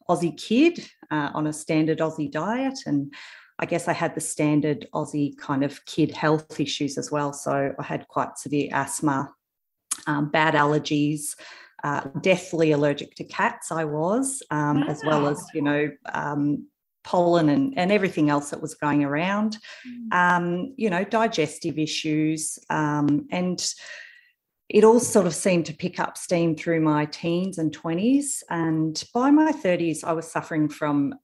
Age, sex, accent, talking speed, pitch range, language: 40-59, female, Australian, 160 wpm, 145-175 Hz, English